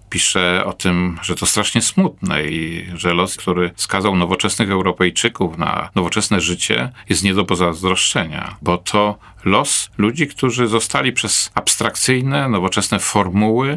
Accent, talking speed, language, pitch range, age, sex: native, 135 wpm, Polish, 90-115 Hz, 40-59, male